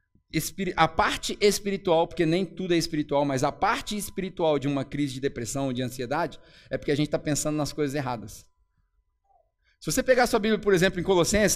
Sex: male